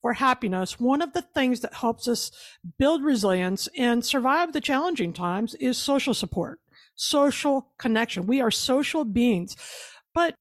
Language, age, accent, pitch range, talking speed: English, 50-69, American, 225-290 Hz, 150 wpm